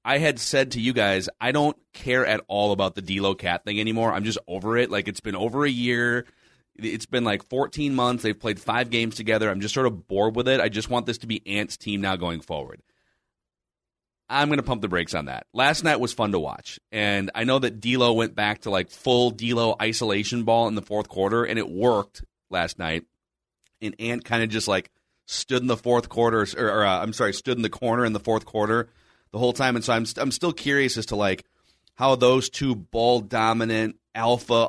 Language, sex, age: English, male, 30-49